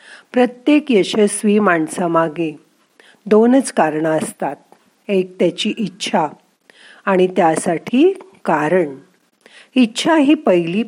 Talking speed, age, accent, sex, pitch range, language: 85 wpm, 50-69, native, female, 175-240 Hz, Marathi